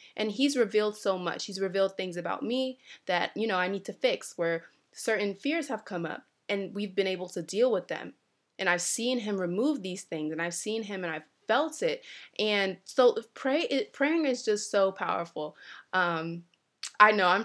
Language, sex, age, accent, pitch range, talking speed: English, female, 20-39, American, 185-255 Hz, 195 wpm